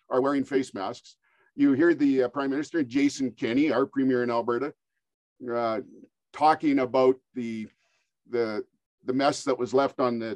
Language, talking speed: English, 160 wpm